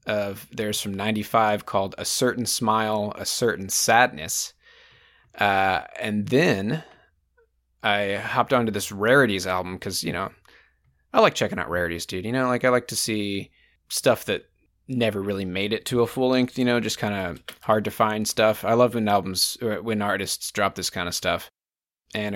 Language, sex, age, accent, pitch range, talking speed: English, male, 20-39, American, 95-125 Hz, 180 wpm